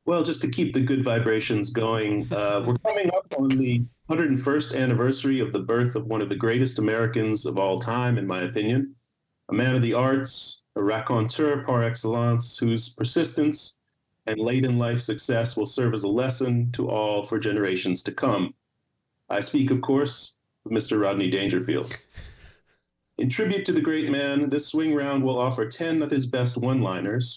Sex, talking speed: male, 175 wpm